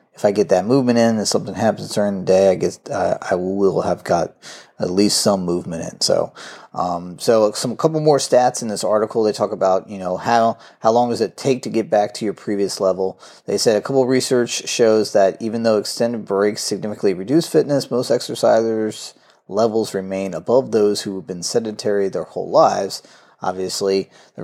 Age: 30-49